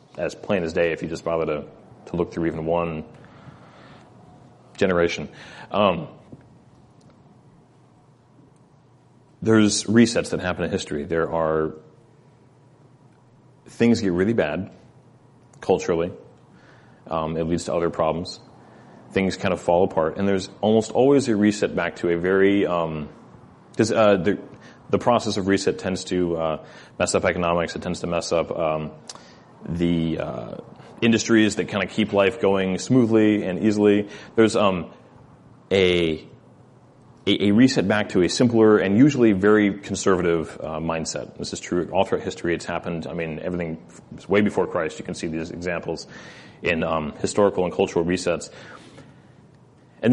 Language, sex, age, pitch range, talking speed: English, male, 30-49, 85-115 Hz, 145 wpm